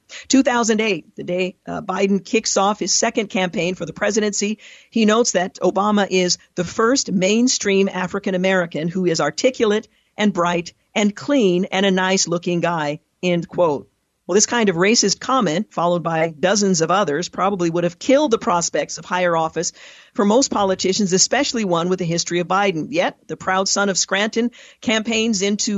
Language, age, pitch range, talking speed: English, 50-69, 175-210 Hz, 170 wpm